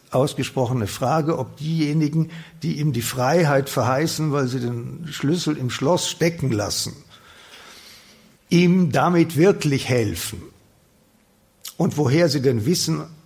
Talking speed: 120 wpm